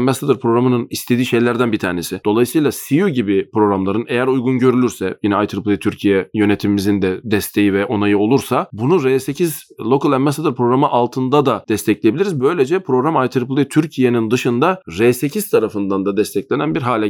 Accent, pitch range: native, 105-130 Hz